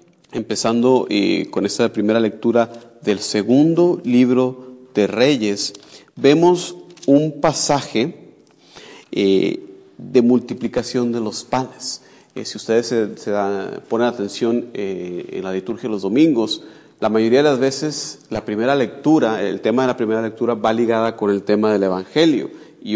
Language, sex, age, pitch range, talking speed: Spanish, male, 40-59, 105-130 Hz, 150 wpm